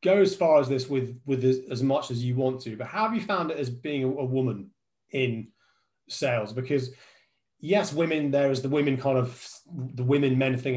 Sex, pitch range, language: male, 125-145 Hz, English